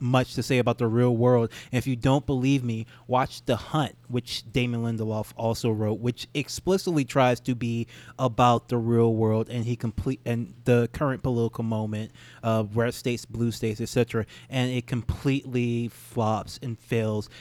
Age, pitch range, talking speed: 20-39, 115-145 Hz, 170 wpm